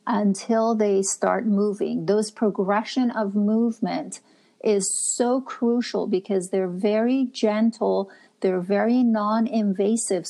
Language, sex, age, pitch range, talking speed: English, female, 50-69, 190-230 Hz, 105 wpm